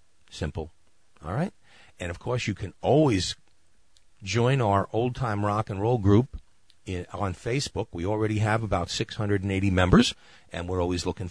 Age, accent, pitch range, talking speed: 50-69, American, 90-135 Hz, 150 wpm